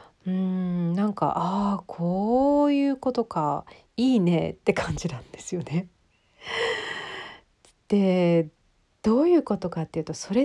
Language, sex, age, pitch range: Japanese, female, 40-59, 165-220 Hz